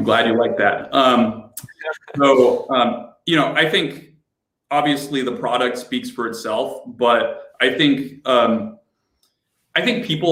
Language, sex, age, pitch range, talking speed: English, male, 30-49, 120-150 Hz, 140 wpm